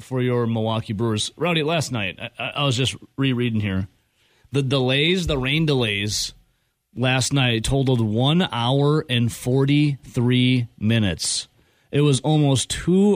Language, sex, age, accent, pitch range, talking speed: English, male, 30-49, American, 115-140 Hz, 135 wpm